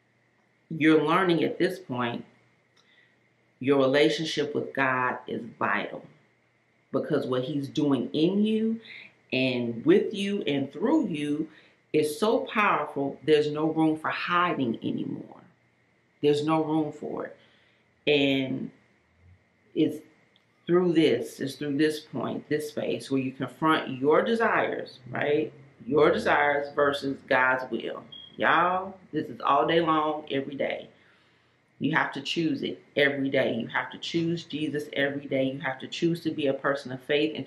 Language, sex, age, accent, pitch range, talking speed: English, female, 40-59, American, 135-175 Hz, 145 wpm